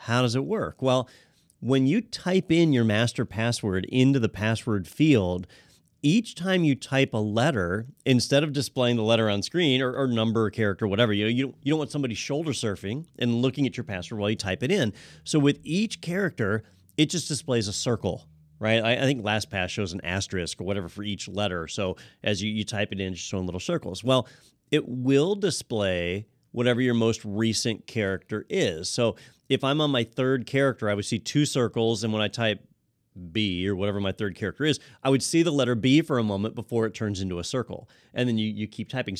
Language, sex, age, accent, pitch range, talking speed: English, male, 30-49, American, 105-135 Hz, 215 wpm